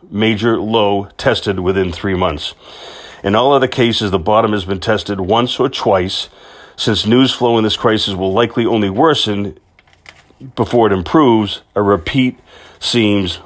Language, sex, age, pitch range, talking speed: English, male, 40-59, 95-115 Hz, 150 wpm